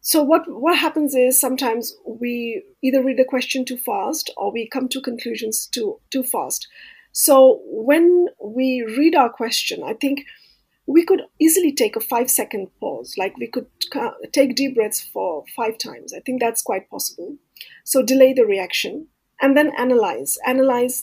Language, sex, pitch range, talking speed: English, female, 235-340 Hz, 170 wpm